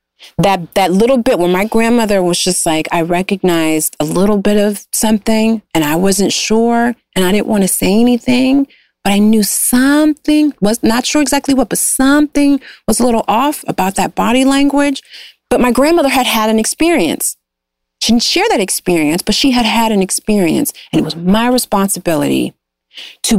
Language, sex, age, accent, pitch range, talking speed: English, female, 30-49, American, 175-235 Hz, 180 wpm